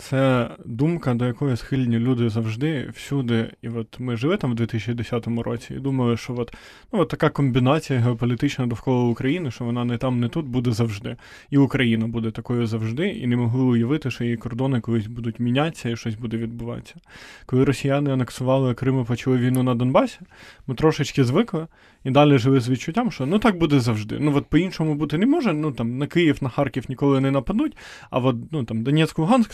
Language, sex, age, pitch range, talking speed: Ukrainian, male, 20-39, 120-145 Hz, 195 wpm